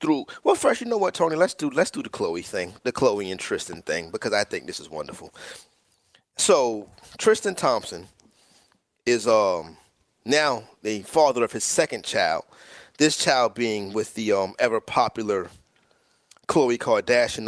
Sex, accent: male, American